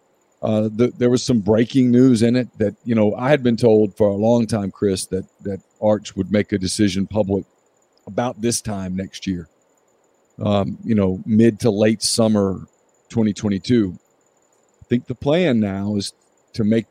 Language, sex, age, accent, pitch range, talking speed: English, male, 50-69, American, 105-125 Hz, 175 wpm